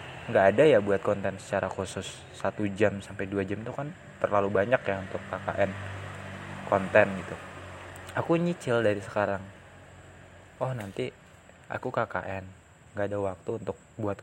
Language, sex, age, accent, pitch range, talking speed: Indonesian, male, 20-39, native, 95-110 Hz, 145 wpm